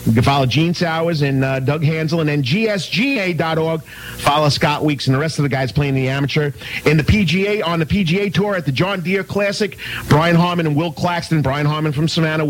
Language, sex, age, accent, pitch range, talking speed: English, male, 40-59, American, 145-200 Hz, 215 wpm